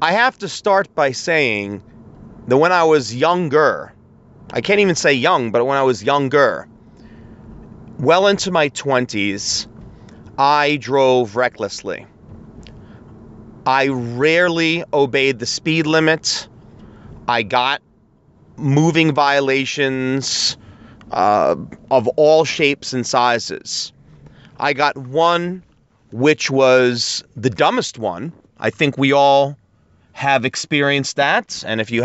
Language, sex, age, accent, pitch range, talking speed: English, male, 30-49, American, 125-155 Hz, 115 wpm